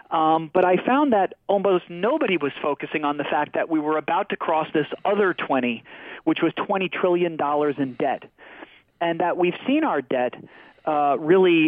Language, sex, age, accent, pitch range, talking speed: English, male, 40-59, American, 150-195 Hz, 180 wpm